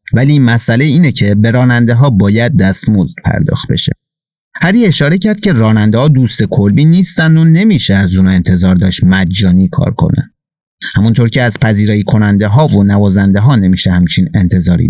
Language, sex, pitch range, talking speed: Persian, male, 100-145 Hz, 165 wpm